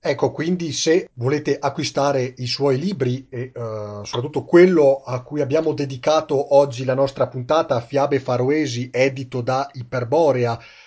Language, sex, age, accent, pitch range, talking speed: Italian, male, 40-59, native, 120-145 Hz, 140 wpm